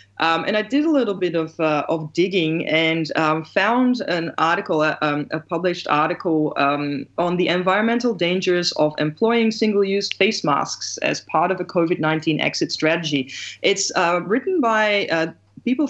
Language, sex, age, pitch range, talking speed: English, female, 20-39, 155-190 Hz, 160 wpm